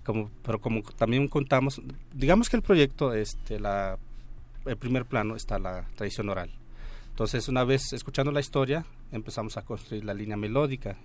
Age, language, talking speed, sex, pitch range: 40-59, Spanish, 165 wpm, male, 105-130 Hz